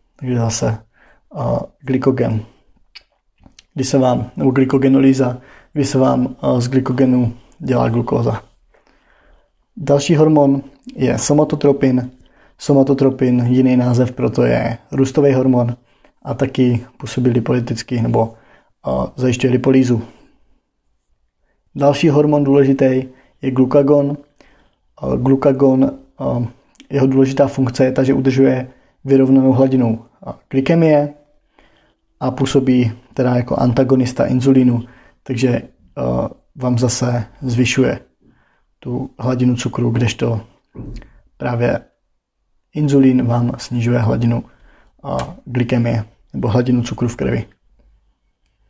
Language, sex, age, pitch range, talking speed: Czech, male, 20-39, 120-135 Hz, 90 wpm